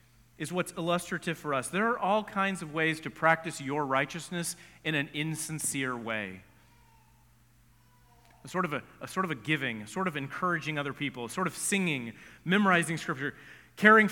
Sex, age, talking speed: male, 30-49, 175 wpm